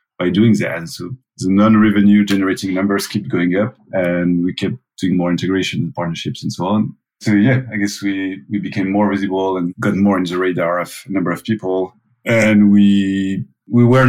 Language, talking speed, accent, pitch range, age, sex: English, 200 wpm, French, 95-110 Hz, 30-49, male